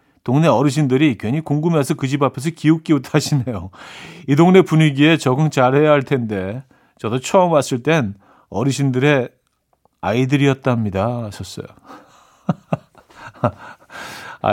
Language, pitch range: Korean, 120-155 Hz